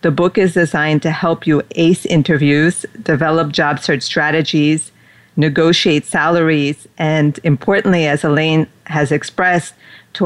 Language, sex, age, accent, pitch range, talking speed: English, female, 40-59, American, 150-170 Hz, 130 wpm